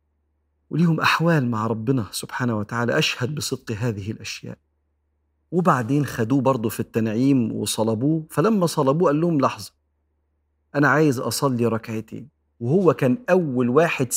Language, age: Arabic, 50-69